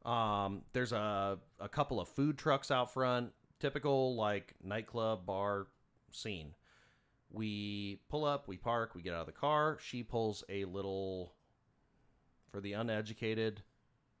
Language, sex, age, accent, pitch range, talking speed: English, male, 30-49, American, 95-125 Hz, 140 wpm